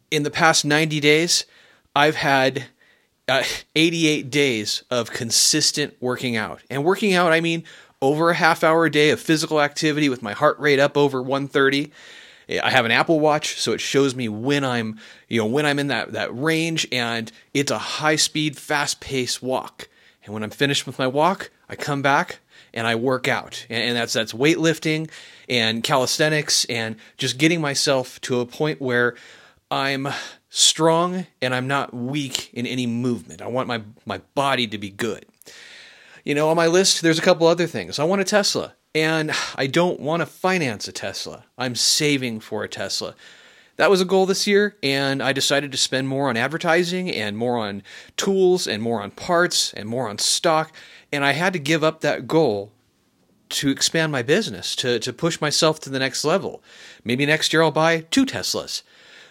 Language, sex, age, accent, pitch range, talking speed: English, male, 30-49, American, 125-160 Hz, 190 wpm